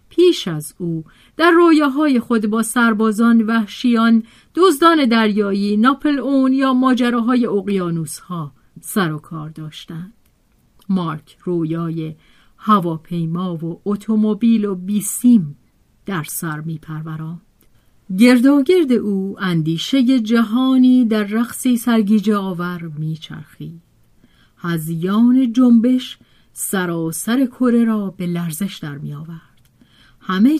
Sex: female